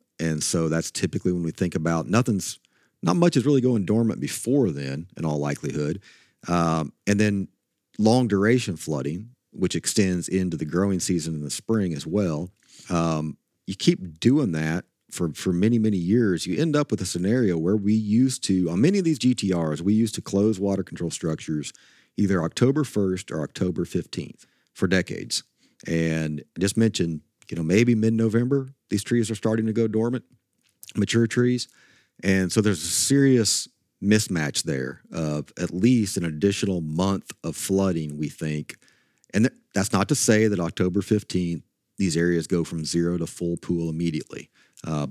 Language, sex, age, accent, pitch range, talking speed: English, male, 40-59, American, 85-110 Hz, 170 wpm